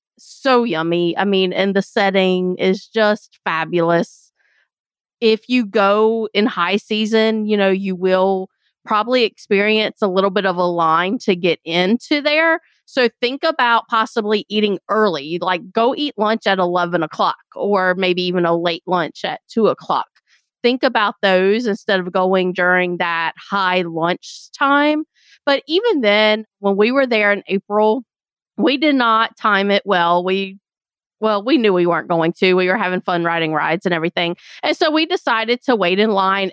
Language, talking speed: English, 170 wpm